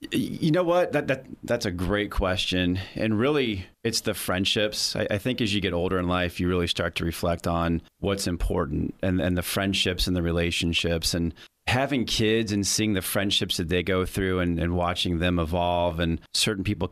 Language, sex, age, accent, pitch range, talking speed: English, male, 30-49, American, 90-110 Hz, 200 wpm